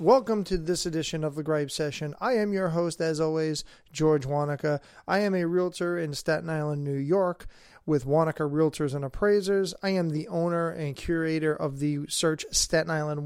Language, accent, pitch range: English, American, 155-195 Hz